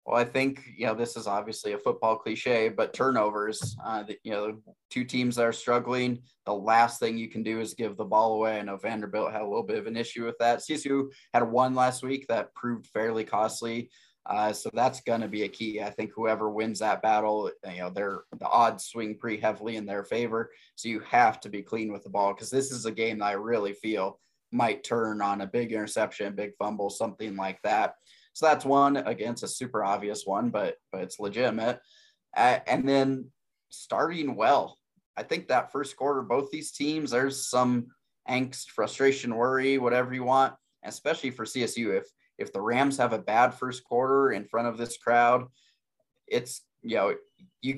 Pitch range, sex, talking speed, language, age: 110-130 Hz, male, 200 wpm, English, 20-39